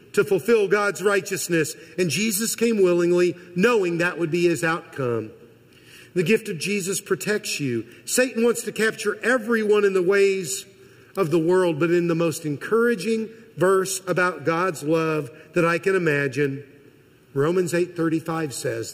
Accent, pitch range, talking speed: American, 140-195 Hz, 150 wpm